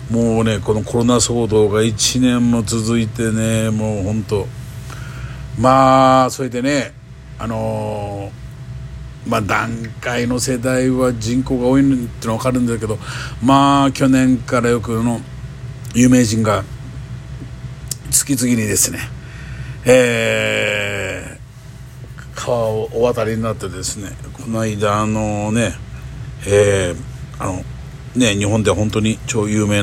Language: Japanese